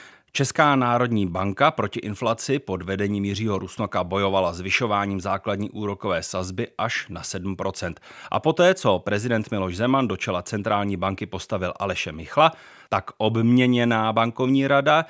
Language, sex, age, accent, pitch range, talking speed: Czech, male, 30-49, native, 95-130 Hz, 140 wpm